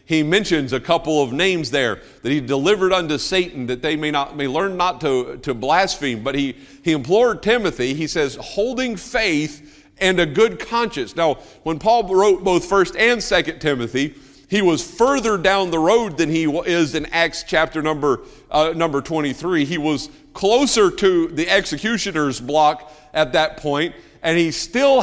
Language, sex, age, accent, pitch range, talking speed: English, male, 50-69, American, 140-180 Hz, 175 wpm